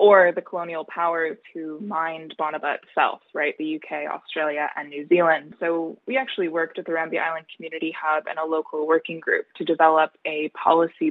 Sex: female